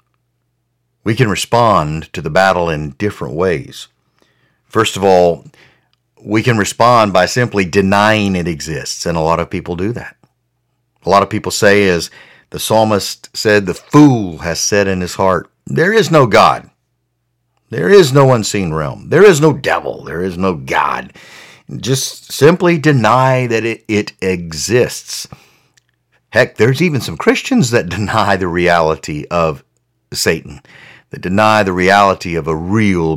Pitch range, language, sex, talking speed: 90-120 Hz, English, male, 155 wpm